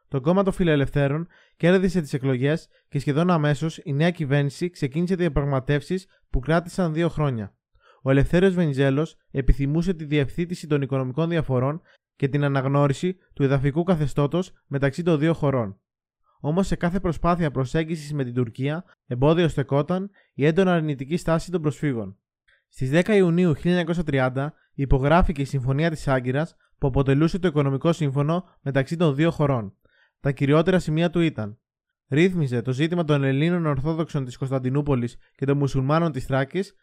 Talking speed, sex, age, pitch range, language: 145 wpm, male, 20-39, 135-170 Hz, Greek